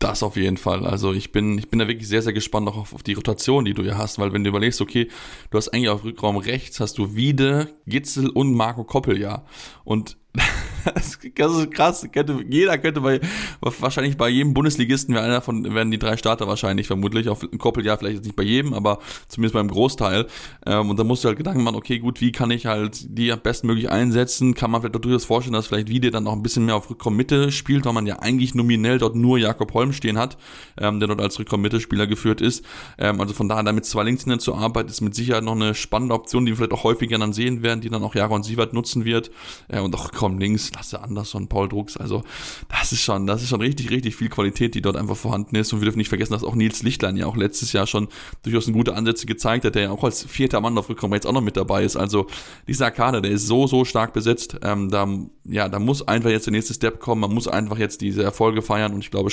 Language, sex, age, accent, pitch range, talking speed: German, male, 20-39, German, 105-120 Hz, 245 wpm